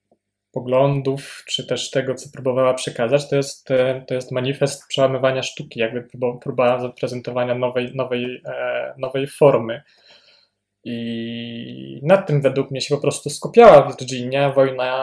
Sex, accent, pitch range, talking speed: male, native, 120-140 Hz, 130 wpm